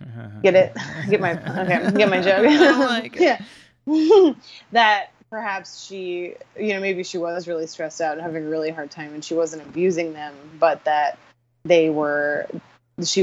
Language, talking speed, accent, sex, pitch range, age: English, 170 wpm, American, female, 150-180 Hz, 20-39